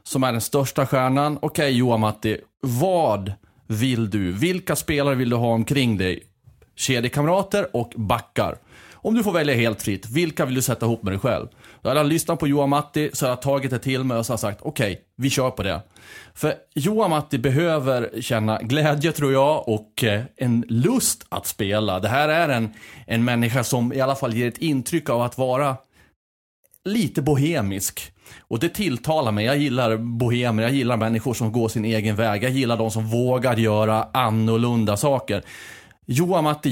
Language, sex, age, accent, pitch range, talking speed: Swedish, male, 30-49, native, 110-140 Hz, 185 wpm